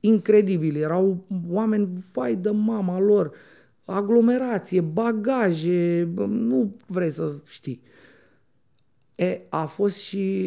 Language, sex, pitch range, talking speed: Romanian, male, 165-225 Hz, 95 wpm